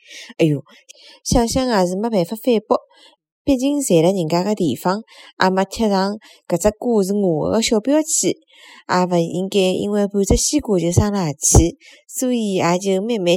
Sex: female